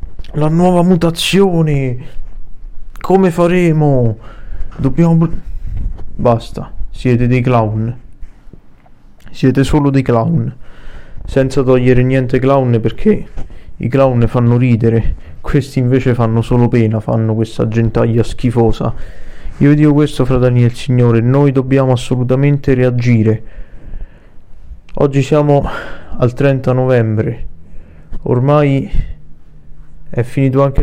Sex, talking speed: male, 100 wpm